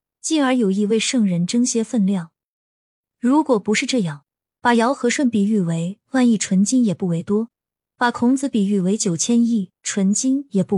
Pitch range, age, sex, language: 195-250 Hz, 20-39, female, Chinese